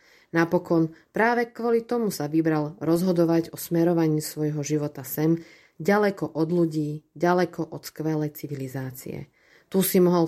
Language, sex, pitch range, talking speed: Slovak, female, 150-190 Hz, 130 wpm